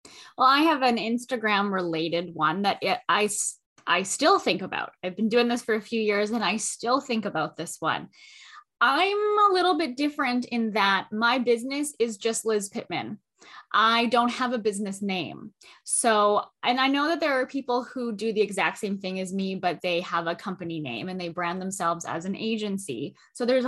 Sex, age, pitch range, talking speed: female, 10-29, 200-270 Hz, 200 wpm